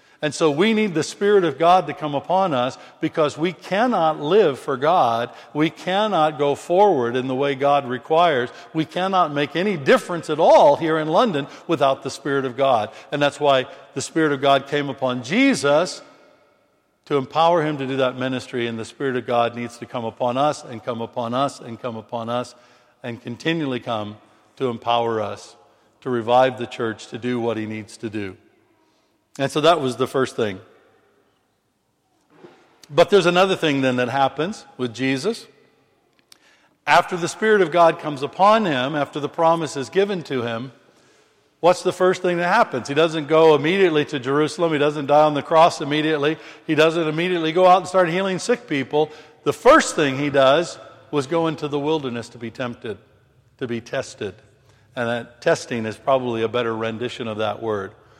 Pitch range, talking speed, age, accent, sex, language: 125-165 Hz, 185 wpm, 60-79, American, male, English